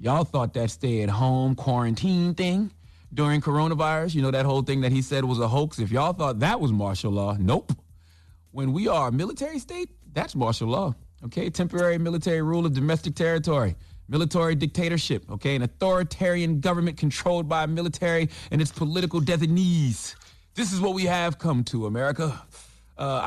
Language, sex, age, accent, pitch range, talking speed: English, male, 30-49, American, 115-155 Hz, 170 wpm